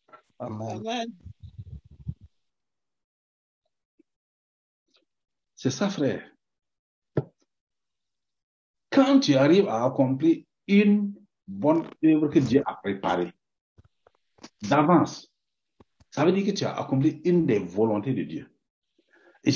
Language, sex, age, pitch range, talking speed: French, male, 60-79, 120-185 Hz, 90 wpm